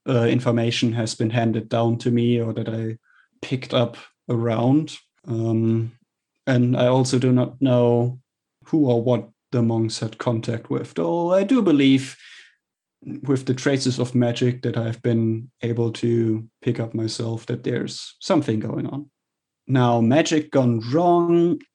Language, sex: English, male